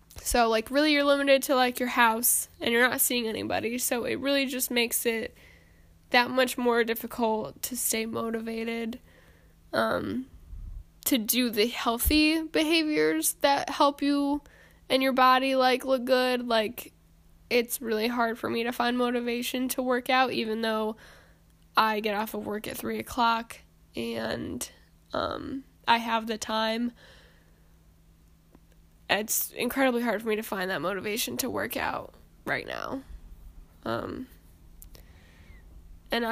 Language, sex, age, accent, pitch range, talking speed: English, female, 10-29, American, 215-255 Hz, 140 wpm